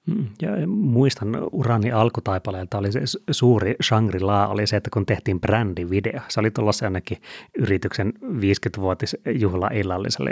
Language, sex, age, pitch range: Finnish, male, 30-49, 95-120 Hz